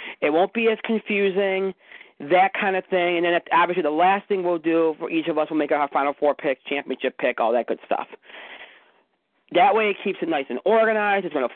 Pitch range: 165-225 Hz